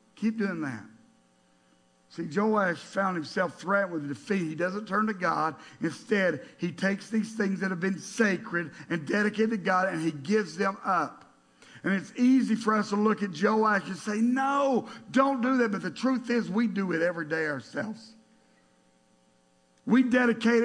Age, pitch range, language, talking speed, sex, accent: 50-69, 170-235 Hz, English, 175 wpm, male, American